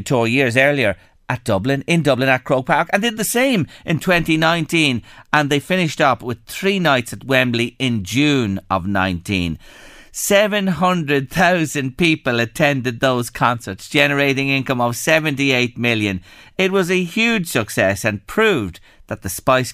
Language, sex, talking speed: English, male, 150 wpm